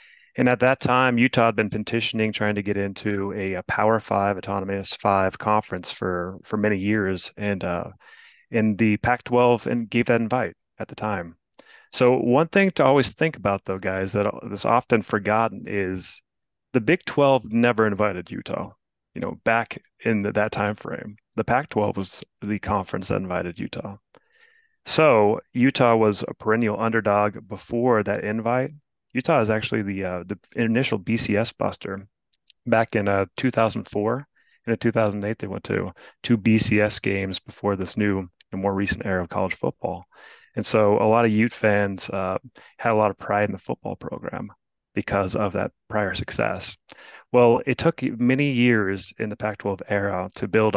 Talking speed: 170 wpm